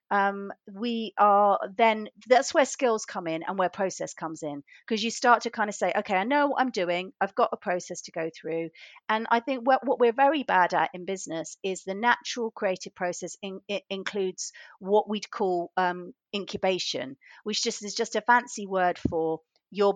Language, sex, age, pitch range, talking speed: English, female, 40-59, 170-215 Hz, 200 wpm